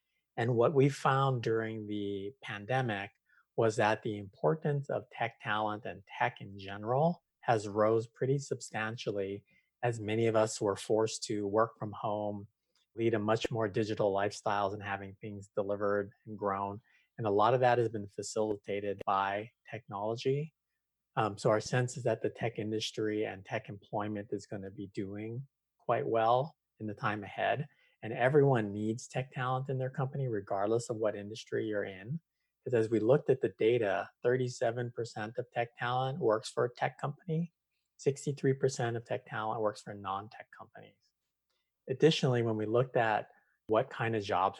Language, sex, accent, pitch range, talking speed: English, male, American, 105-130 Hz, 165 wpm